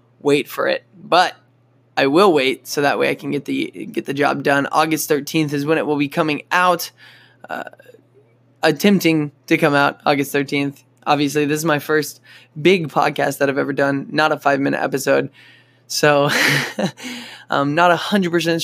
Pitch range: 135-165 Hz